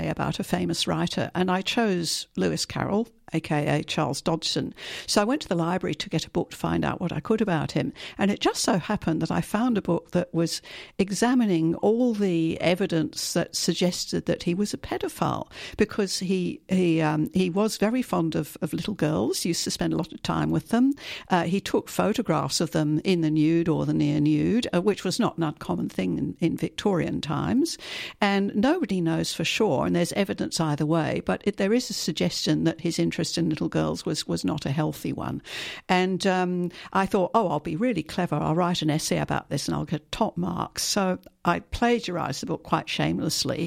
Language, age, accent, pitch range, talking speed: English, 60-79, British, 165-205 Hz, 210 wpm